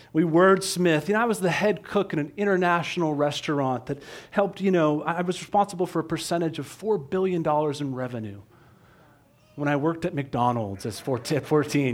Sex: male